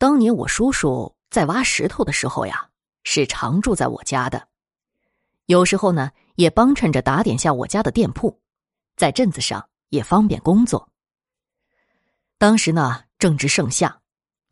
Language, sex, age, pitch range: Chinese, female, 20-39, 145-225 Hz